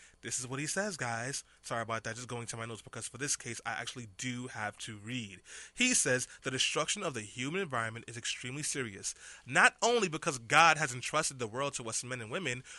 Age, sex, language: 20-39, male, English